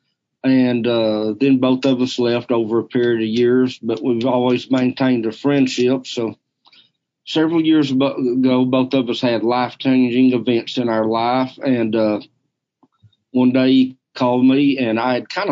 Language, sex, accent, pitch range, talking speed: English, male, American, 120-130 Hz, 165 wpm